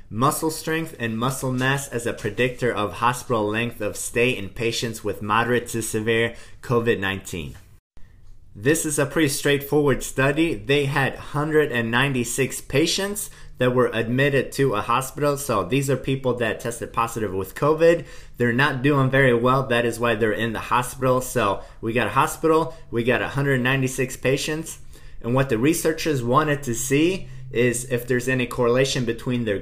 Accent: American